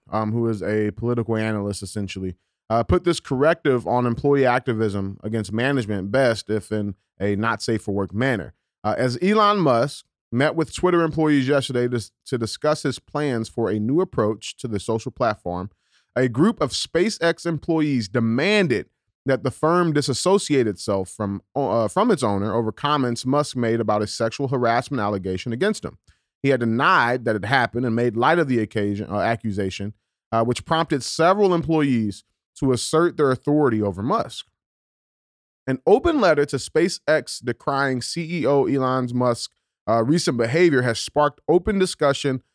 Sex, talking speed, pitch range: male, 160 wpm, 110-145 Hz